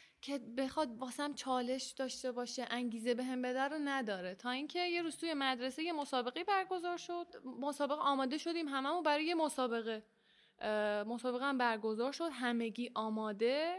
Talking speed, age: 150 wpm, 10-29